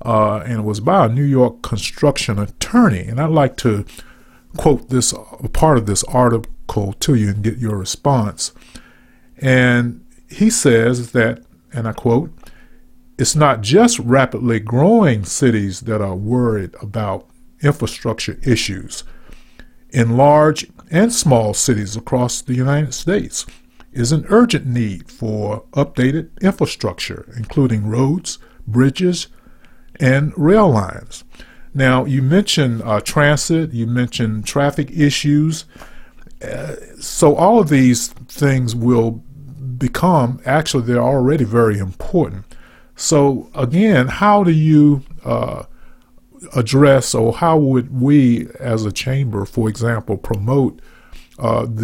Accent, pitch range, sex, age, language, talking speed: American, 115-145 Hz, male, 40-59, English, 125 wpm